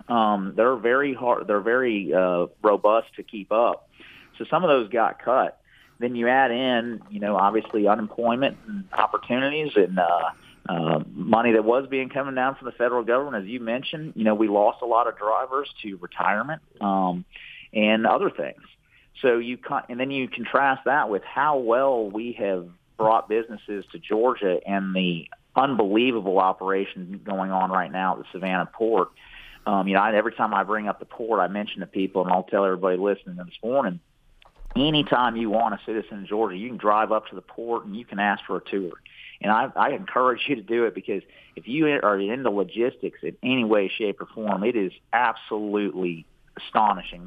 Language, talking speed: English, 190 wpm